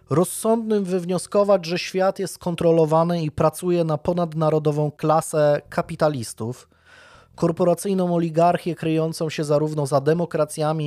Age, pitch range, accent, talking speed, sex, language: 20-39, 145-170 Hz, native, 105 wpm, male, Polish